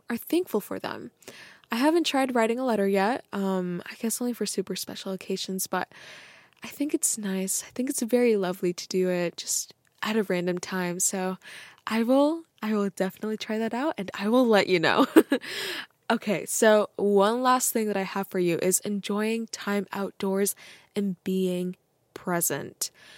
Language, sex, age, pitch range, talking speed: English, female, 10-29, 185-230 Hz, 180 wpm